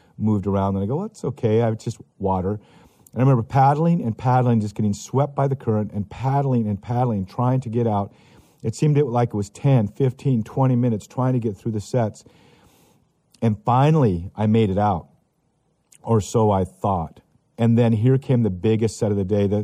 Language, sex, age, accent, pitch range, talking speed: English, male, 50-69, American, 105-130 Hz, 205 wpm